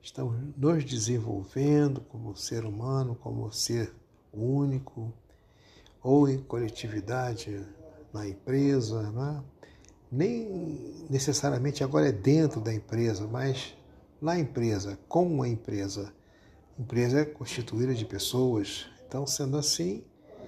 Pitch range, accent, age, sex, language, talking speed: 110-140 Hz, Brazilian, 60-79, male, Portuguese, 105 wpm